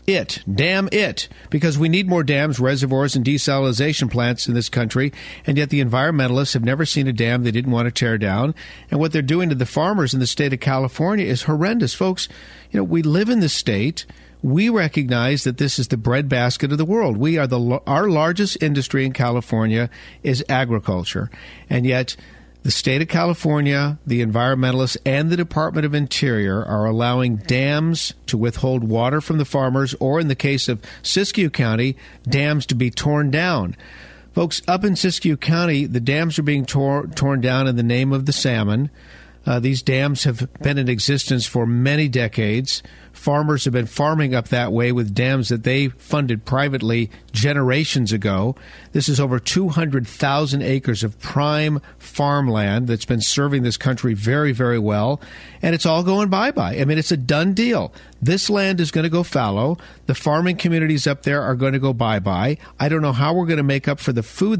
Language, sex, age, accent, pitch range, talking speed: English, male, 50-69, American, 120-155 Hz, 190 wpm